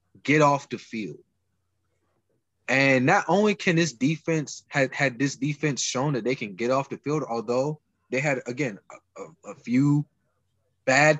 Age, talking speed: 20-39, 160 wpm